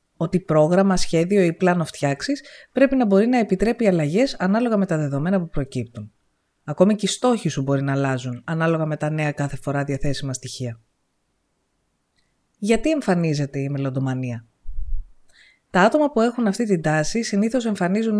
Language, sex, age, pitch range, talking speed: Greek, female, 20-39, 145-210 Hz, 155 wpm